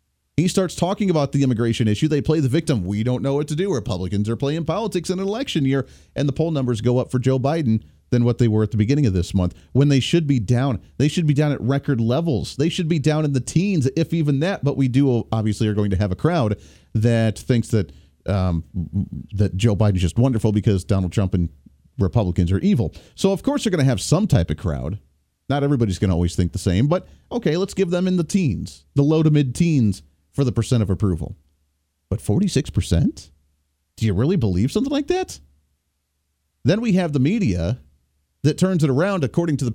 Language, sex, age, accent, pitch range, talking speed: English, male, 40-59, American, 100-160 Hz, 225 wpm